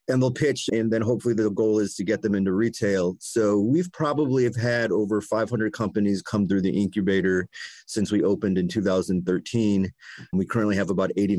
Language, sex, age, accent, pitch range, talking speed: English, male, 30-49, American, 95-115 Hz, 190 wpm